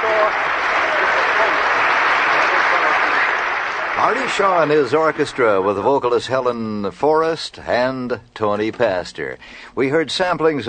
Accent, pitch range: American, 110-155 Hz